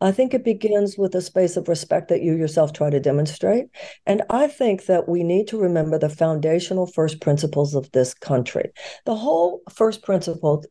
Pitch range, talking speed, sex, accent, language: 160-215 Hz, 190 wpm, female, American, English